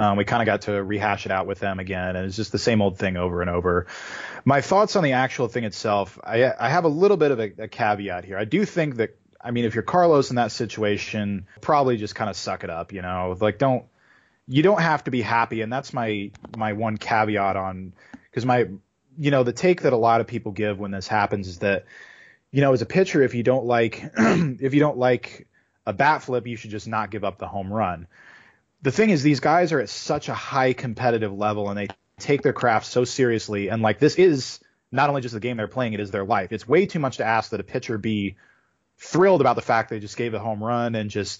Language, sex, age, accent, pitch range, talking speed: English, male, 20-39, American, 100-125 Hz, 250 wpm